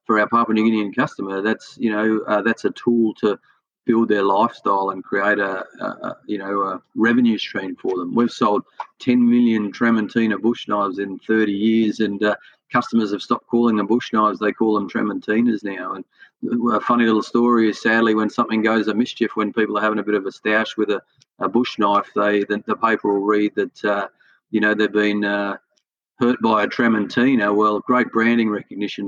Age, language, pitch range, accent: 30-49, English, 105-120 Hz, Australian